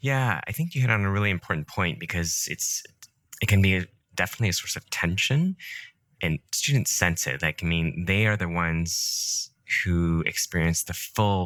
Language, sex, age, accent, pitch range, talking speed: English, male, 20-39, American, 80-105 Hz, 185 wpm